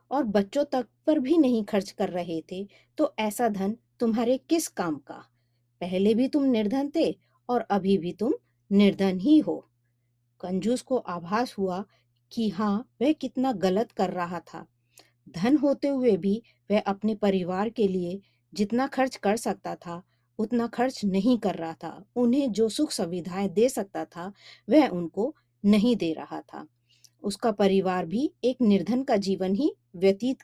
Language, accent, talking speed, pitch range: Hindi, native, 165 wpm, 175-240 Hz